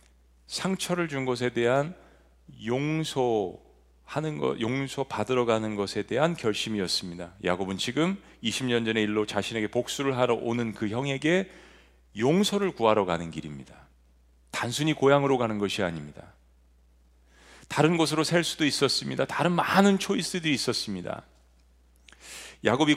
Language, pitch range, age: Korean, 85-140 Hz, 40-59